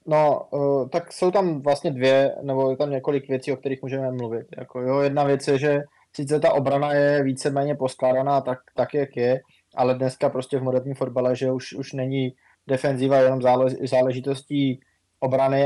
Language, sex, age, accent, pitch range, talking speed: Czech, male, 20-39, native, 125-135 Hz, 180 wpm